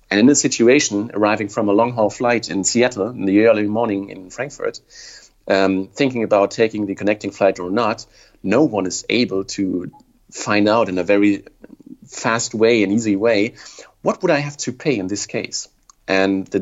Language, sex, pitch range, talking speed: English, male, 95-115 Hz, 190 wpm